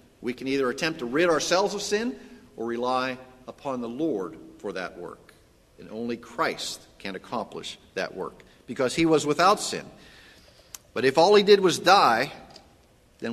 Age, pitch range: 50-69, 130-170 Hz